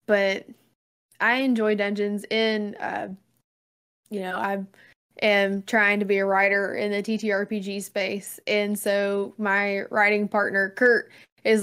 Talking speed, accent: 135 wpm, American